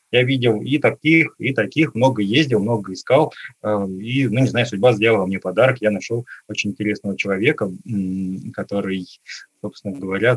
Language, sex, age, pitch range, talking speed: Russian, male, 20-39, 100-130 Hz, 150 wpm